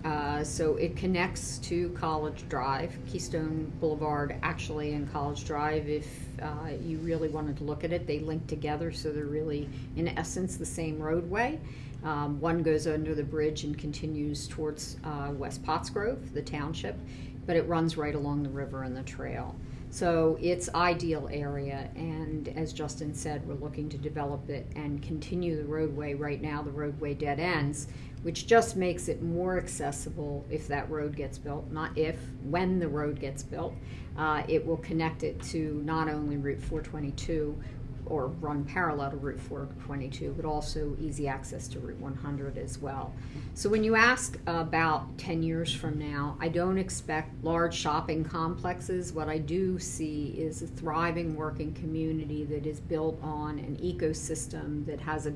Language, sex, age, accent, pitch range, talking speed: English, female, 50-69, American, 145-160 Hz, 170 wpm